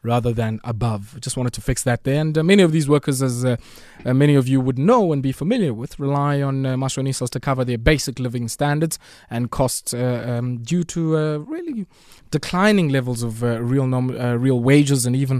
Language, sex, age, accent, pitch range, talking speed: English, male, 20-39, South African, 115-145 Hz, 220 wpm